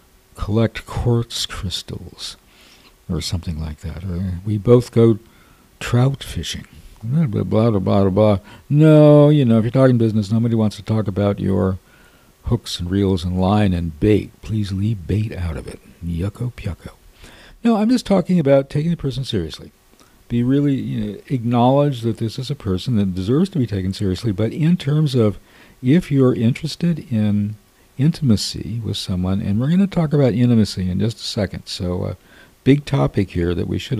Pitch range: 100-140 Hz